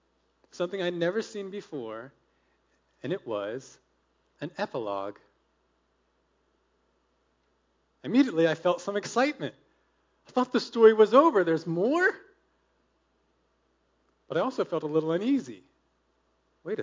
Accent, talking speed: American, 110 wpm